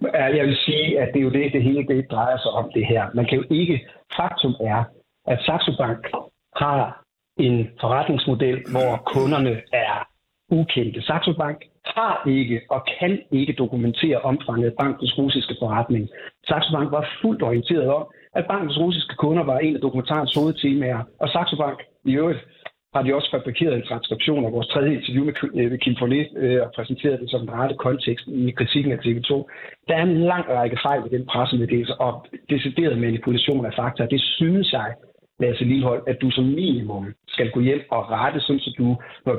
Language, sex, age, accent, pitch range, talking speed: Danish, male, 60-79, native, 120-145 Hz, 180 wpm